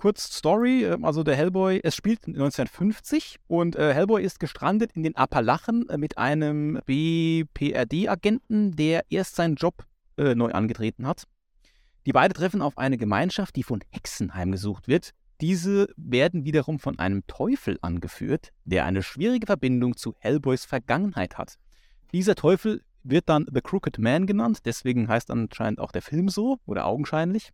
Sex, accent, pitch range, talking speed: male, German, 130-190 Hz, 150 wpm